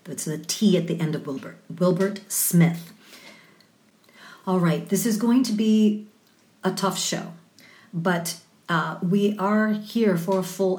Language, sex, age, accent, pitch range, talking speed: English, female, 40-59, American, 170-210 Hz, 155 wpm